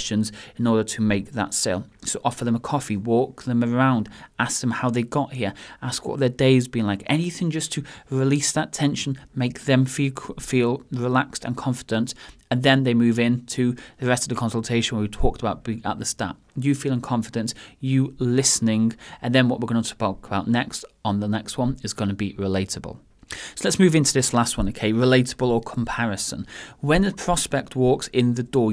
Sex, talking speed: male, 205 wpm